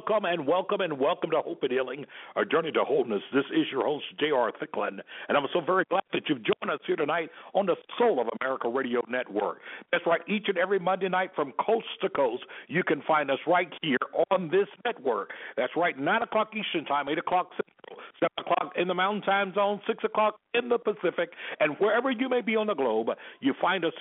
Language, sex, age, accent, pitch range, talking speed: English, male, 60-79, American, 150-210 Hz, 220 wpm